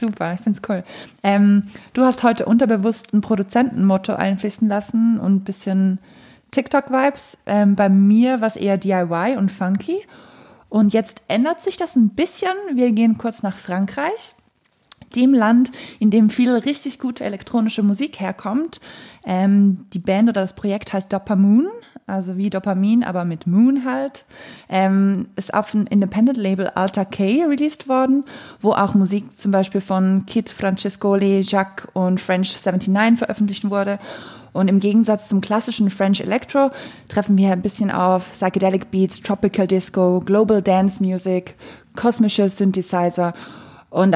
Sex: female